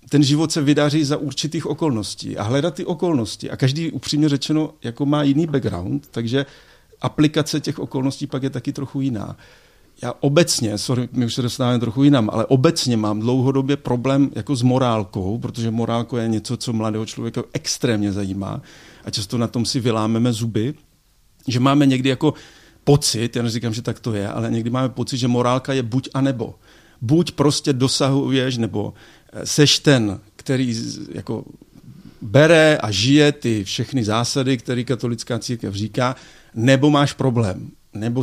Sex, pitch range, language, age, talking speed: male, 115-145 Hz, Czech, 50-69, 160 wpm